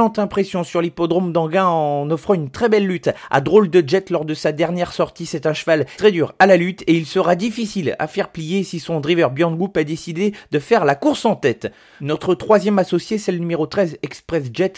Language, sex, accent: French, male, French